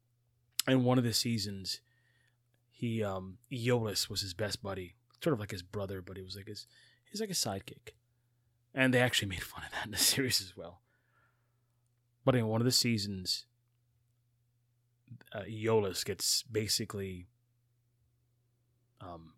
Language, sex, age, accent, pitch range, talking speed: English, male, 20-39, American, 100-120 Hz, 150 wpm